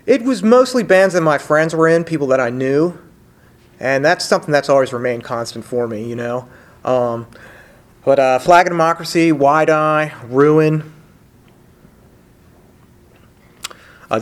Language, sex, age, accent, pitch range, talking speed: English, male, 30-49, American, 125-160 Hz, 145 wpm